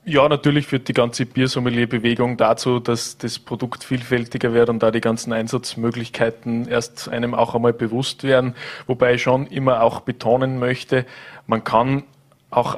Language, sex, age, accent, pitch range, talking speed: German, male, 20-39, Austrian, 120-135 Hz, 155 wpm